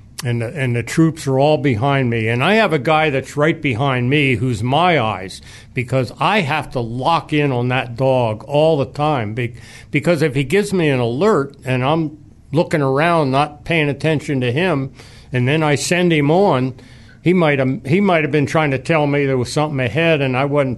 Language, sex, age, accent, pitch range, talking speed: English, male, 60-79, American, 125-155 Hz, 205 wpm